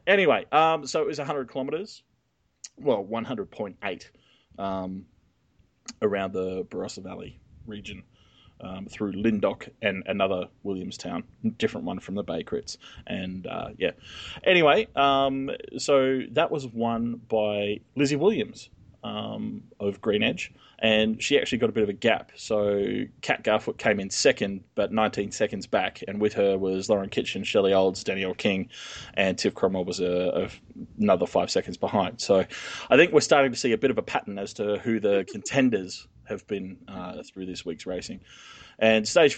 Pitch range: 95-115 Hz